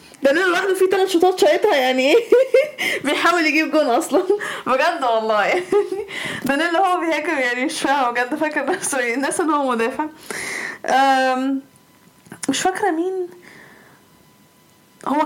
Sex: female